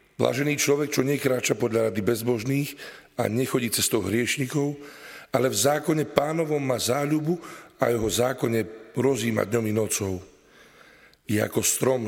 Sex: male